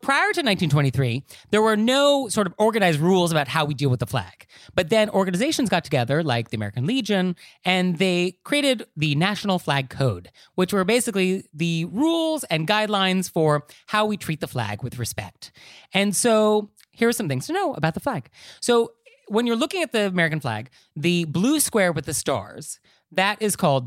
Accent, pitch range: American, 135-195 Hz